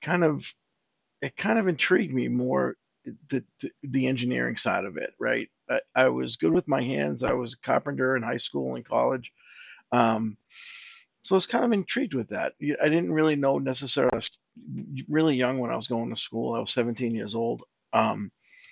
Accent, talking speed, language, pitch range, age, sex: American, 190 wpm, English, 110-135 Hz, 50-69, male